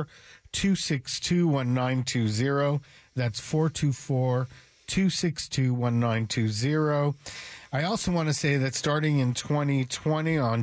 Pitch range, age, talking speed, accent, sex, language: 120-145 Hz, 50-69, 75 wpm, American, male, English